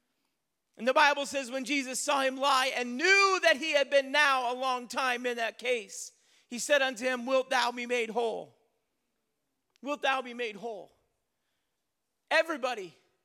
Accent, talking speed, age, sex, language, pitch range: American, 170 wpm, 40-59, male, English, 250-315 Hz